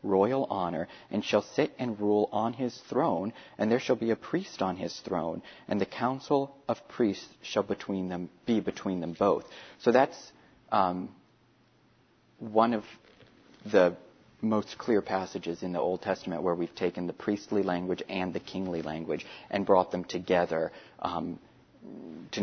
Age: 40-59